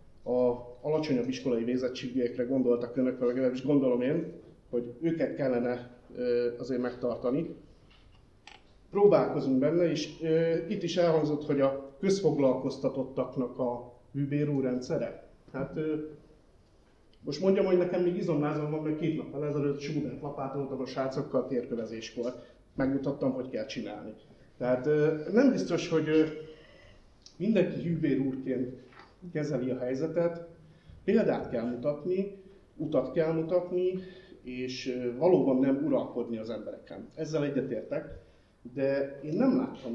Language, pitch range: Hungarian, 125-160 Hz